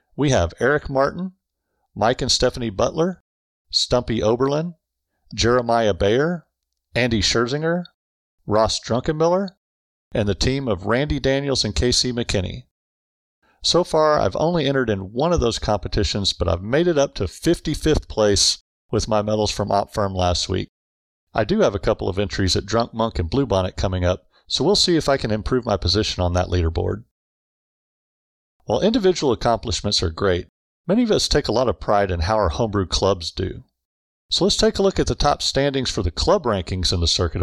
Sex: male